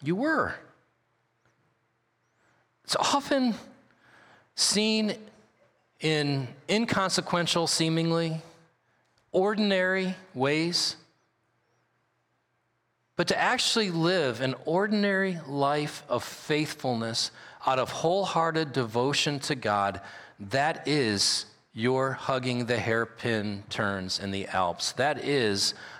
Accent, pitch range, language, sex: American, 115-180 Hz, English, male